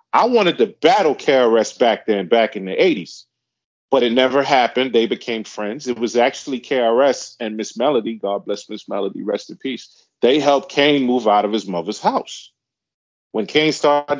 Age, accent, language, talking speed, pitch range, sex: 40-59, American, English, 185 wpm, 120-165 Hz, male